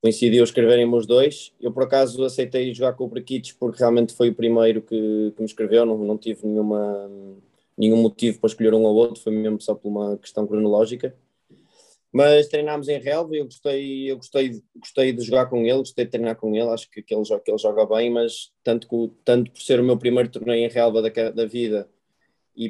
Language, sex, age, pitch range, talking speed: Portuguese, male, 20-39, 110-120 Hz, 220 wpm